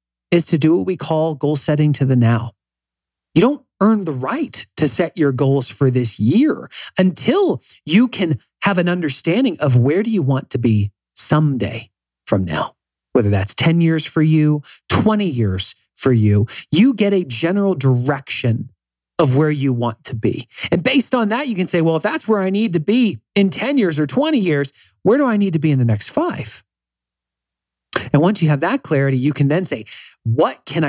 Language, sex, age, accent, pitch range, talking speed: English, male, 40-59, American, 115-165 Hz, 200 wpm